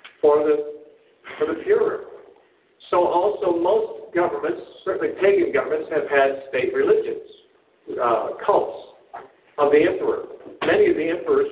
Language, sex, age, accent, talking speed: English, male, 50-69, American, 130 wpm